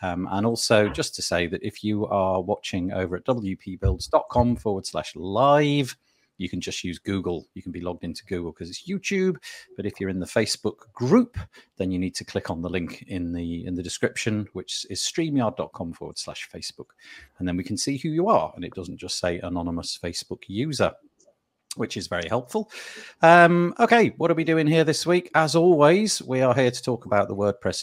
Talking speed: 205 wpm